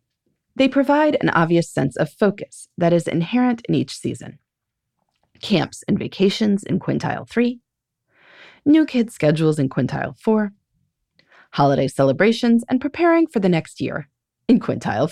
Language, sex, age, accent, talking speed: English, female, 30-49, American, 140 wpm